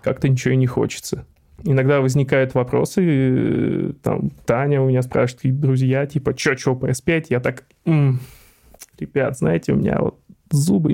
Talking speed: 150 wpm